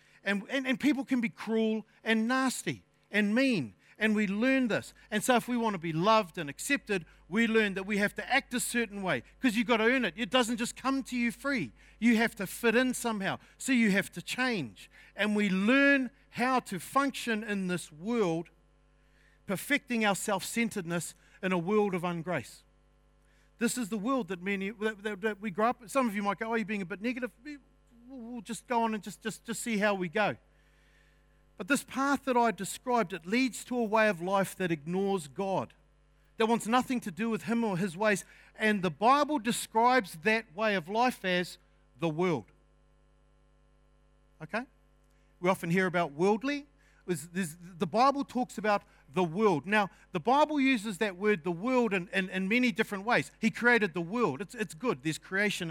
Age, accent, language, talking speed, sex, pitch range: 50-69, Australian, English, 200 wpm, male, 190-240 Hz